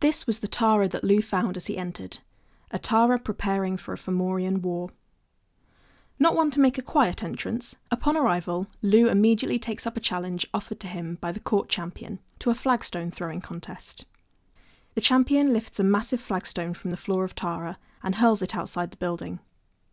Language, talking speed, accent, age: English, 180 wpm, British, 20-39